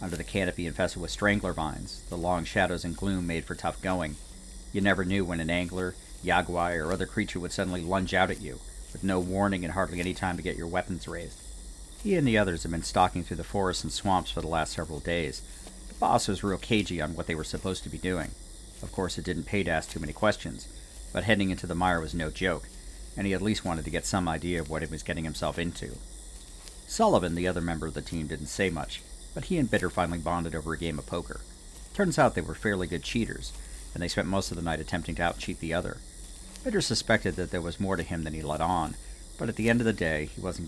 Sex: male